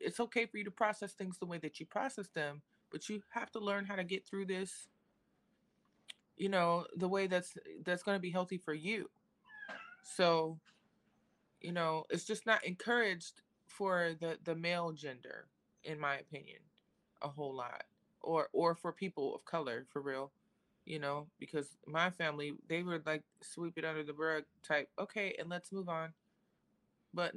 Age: 20-39